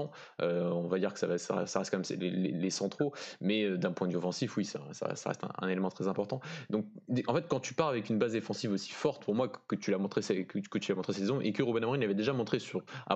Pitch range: 95-110 Hz